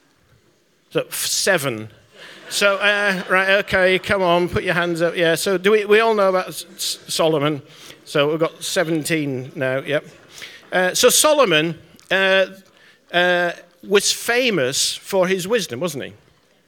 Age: 50-69